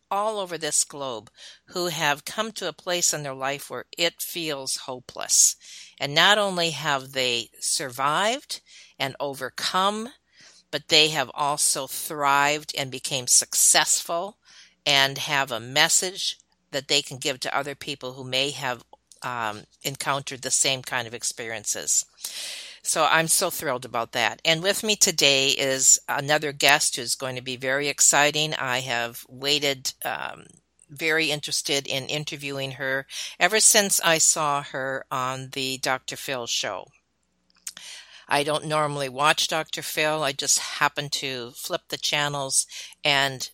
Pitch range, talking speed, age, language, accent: 130-150 Hz, 145 wpm, 50-69, English, American